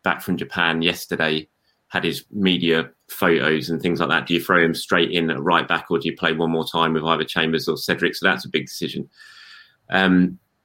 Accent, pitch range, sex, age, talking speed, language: British, 85-95 Hz, male, 20-39, 220 wpm, English